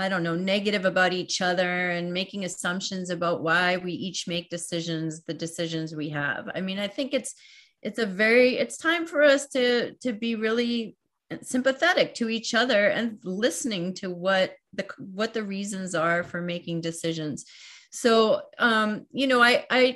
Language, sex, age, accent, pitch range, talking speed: English, female, 30-49, American, 180-240 Hz, 175 wpm